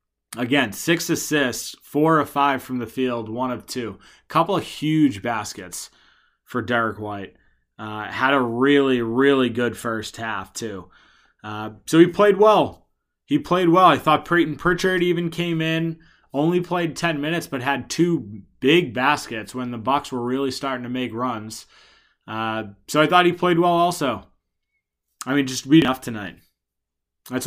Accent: American